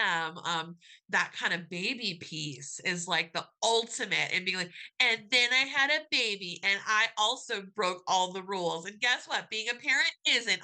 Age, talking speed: 30-49, 185 wpm